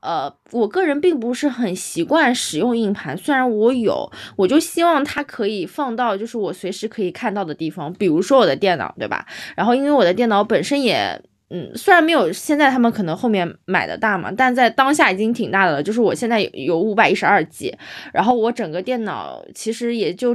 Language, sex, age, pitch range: Chinese, female, 20-39, 195-255 Hz